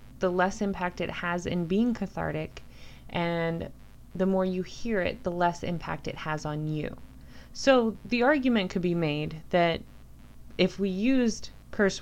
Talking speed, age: 160 wpm, 20-39